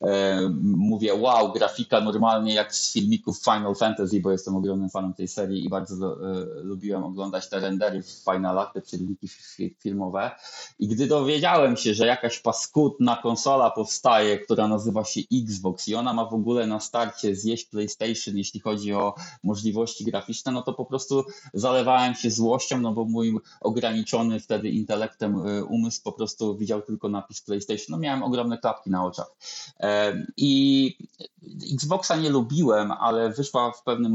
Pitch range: 100-120 Hz